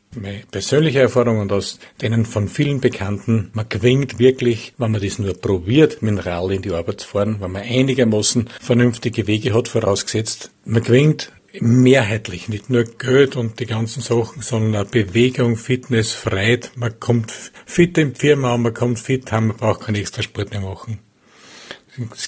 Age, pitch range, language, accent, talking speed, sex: 50-69, 110-130 Hz, German, Austrian, 170 wpm, male